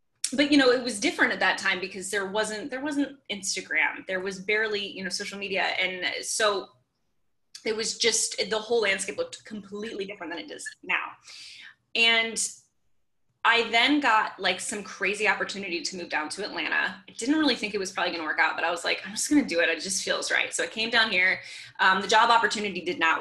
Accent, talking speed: American, 220 wpm